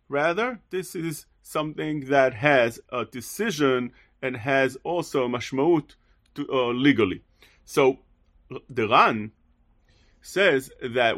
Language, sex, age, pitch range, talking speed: English, male, 40-59, 125-195 Hz, 100 wpm